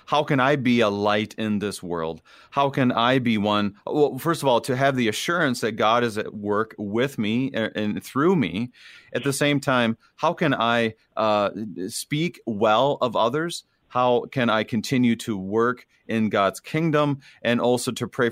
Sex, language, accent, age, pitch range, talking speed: male, English, American, 30-49, 105-135 Hz, 185 wpm